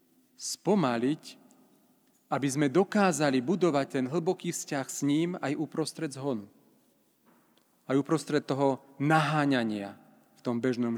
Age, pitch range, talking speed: 40-59, 125-180 Hz, 110 wpm